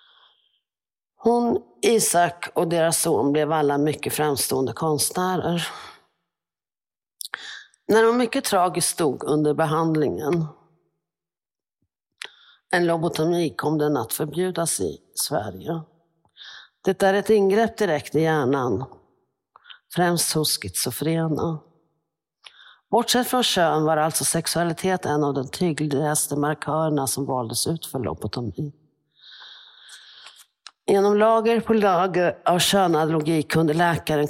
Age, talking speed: 50-69, 105 wpm